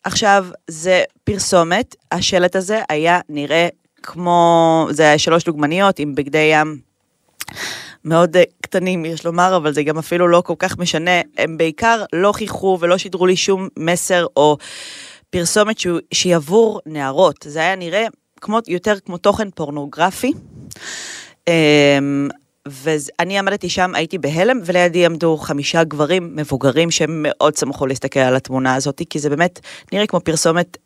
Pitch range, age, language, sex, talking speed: 150-185 Hz, 30-49, Hebrew, female, 140 wpm